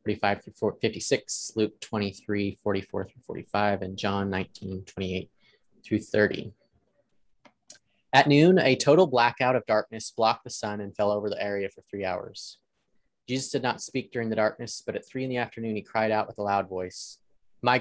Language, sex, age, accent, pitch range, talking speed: English, male, 20-39, American, 105-130 Hz, 180 wpm